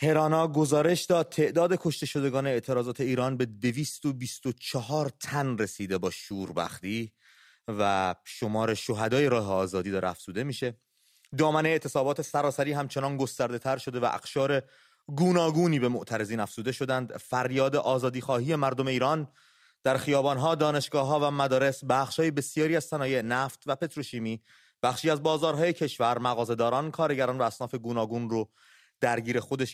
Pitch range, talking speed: 115-145 Hz, 135 wpm